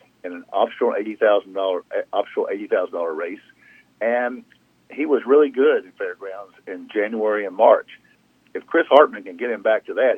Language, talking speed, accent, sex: English, 190 wpm, American, male